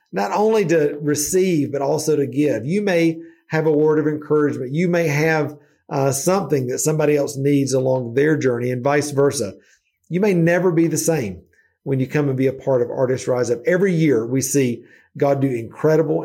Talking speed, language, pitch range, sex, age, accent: 200 wpm, English, 115-155 Hz, male, 50-69, American